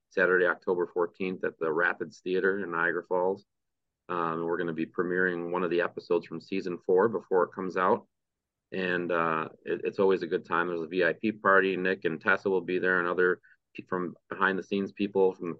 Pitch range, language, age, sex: 90-100 Hz, English, 30-49, male